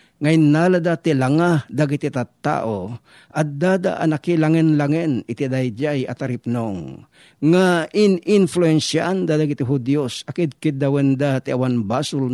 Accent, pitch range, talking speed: native, 130-160 Hz, 130 wpm